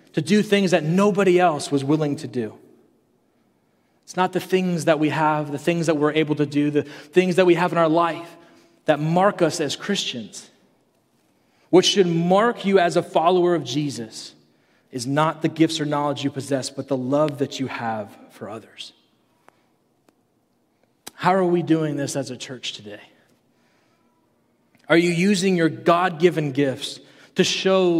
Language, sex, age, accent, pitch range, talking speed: English, male, 30-49, American, 150-185 Hz, 170 wpm